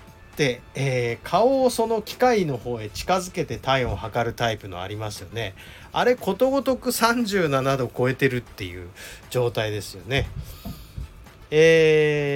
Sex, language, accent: male, Japanese, native